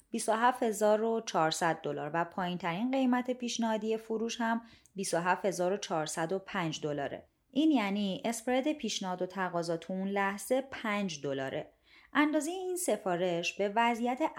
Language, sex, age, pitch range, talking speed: Persian, female, 30-49, 180-245 Hz, 125 wpm